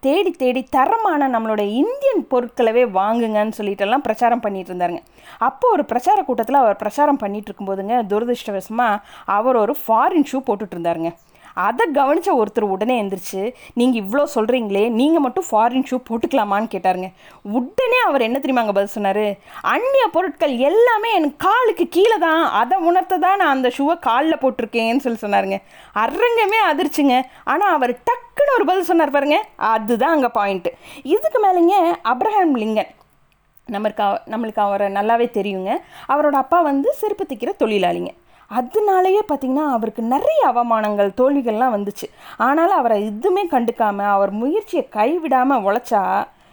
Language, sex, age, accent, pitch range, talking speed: Tamil, female, 20-39, native, 215-340 Hz, 135 wpm